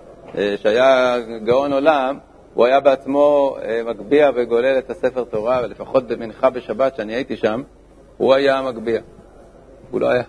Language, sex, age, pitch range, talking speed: Hebrew, male, 50-69, 115-160 Hz, 135 wpm